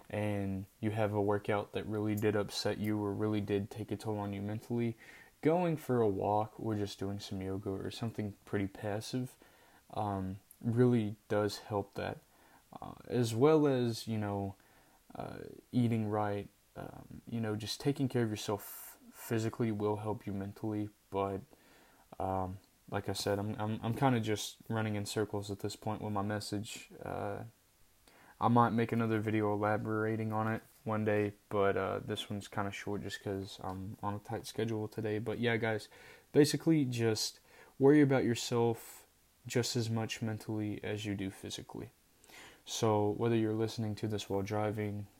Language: English